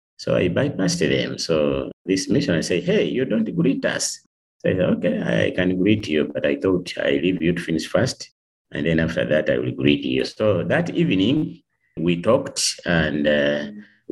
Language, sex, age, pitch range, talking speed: English, male, 50-69, 75-95 Hz, 190 wpm